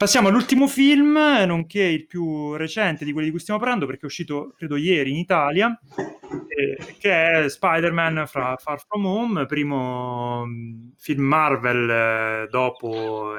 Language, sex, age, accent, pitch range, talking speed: Italian, male, 30-49, native, 120-150 Hz, 135 wpm